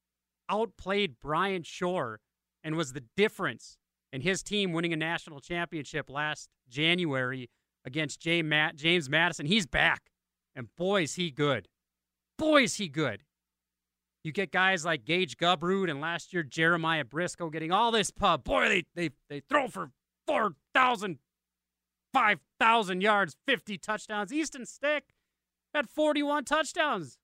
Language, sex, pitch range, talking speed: English, male, 140-195 Hz, 140 wpm